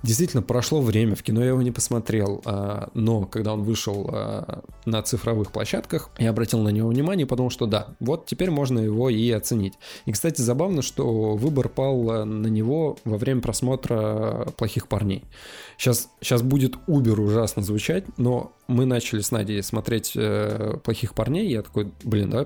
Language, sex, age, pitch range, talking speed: Russian, male, 20-39, 110-135 Hz, 165 wpm